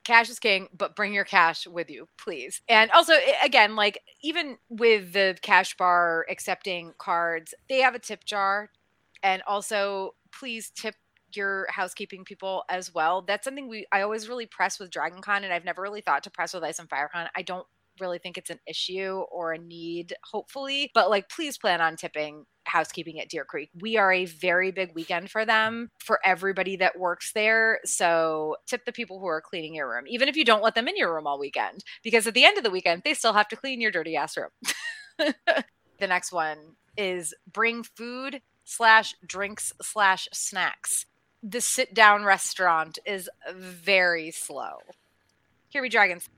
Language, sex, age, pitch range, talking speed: English, female, 30-49, 180-230 Hz, 190 wpm